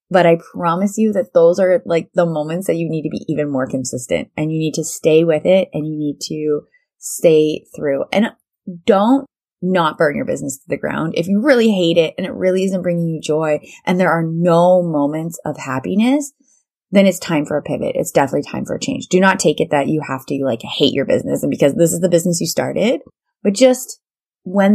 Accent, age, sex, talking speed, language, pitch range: American, 20-39, female, 230 wpm, English, 155-210 Hz